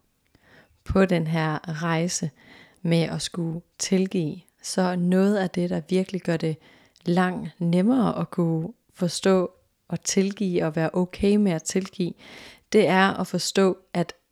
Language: Danish